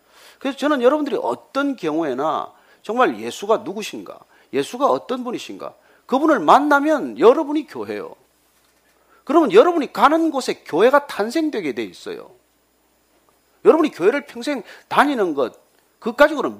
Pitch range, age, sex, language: 225-325 Hz, 40-59, male, Korean